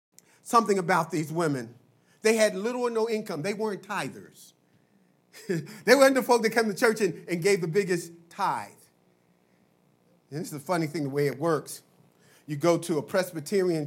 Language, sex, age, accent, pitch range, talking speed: English, male, 40-59, American, 145-190 Hz, 180 wpm